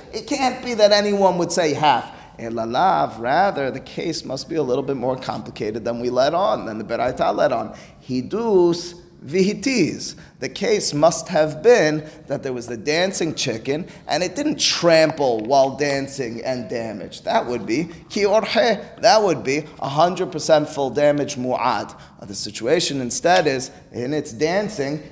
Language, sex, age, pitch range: English, male, 30-49, 135-185 Hz